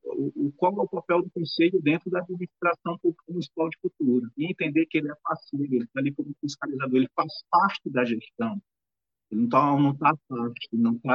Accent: Brazilian